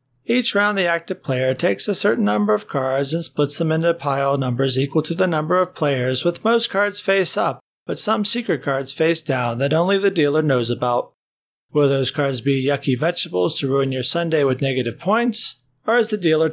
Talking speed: 205 wpm